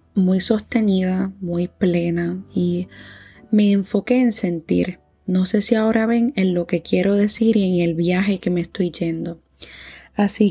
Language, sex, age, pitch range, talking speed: Spanish, female, 20-39, 180-215 Hz, 160 wpm